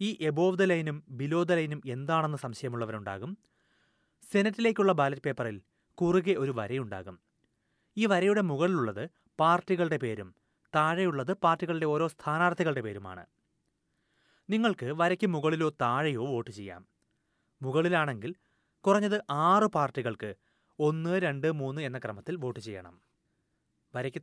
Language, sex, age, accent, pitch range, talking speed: Malayalam, male, 30-49, native, 125-175 Hz, 105 wpm